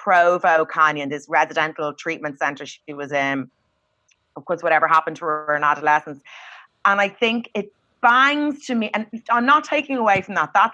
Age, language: 30-49, English